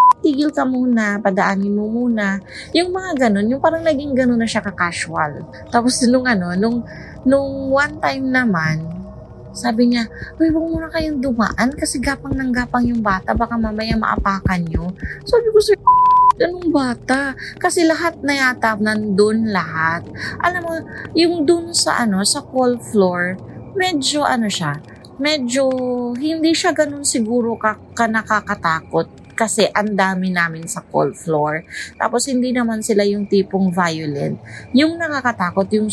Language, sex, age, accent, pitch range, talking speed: Filipino, female, 30-49, native, 200-280 Hz, 145 wpm